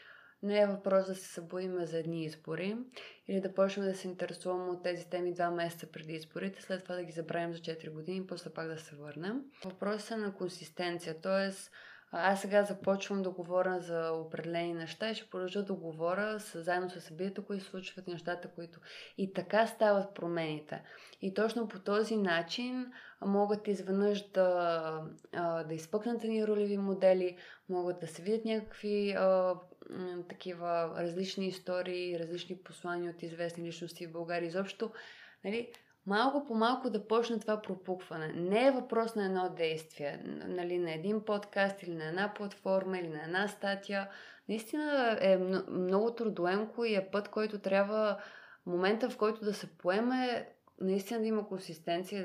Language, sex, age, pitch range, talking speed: Bulgarian, female, 20-39, 175-210 Hz, 160 wpm